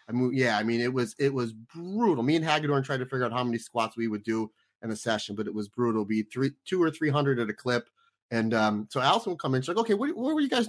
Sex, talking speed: male, 315 wpm